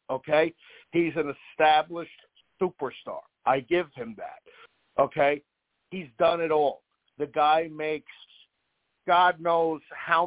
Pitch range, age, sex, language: 140-175 Hz, 50-69, male, English